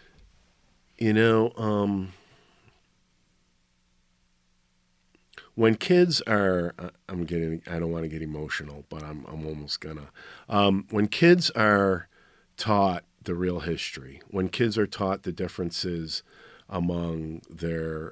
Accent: American